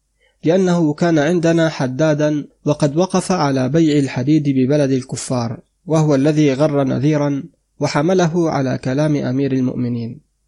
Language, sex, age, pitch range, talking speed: Arabic, male, 30-49, 135-160 Hz, 115 wpm